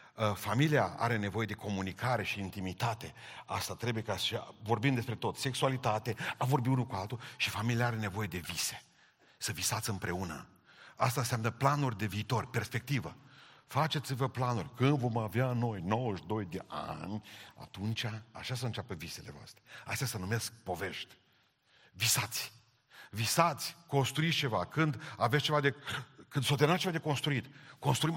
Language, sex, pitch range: Romanian, male, 100-135 Hz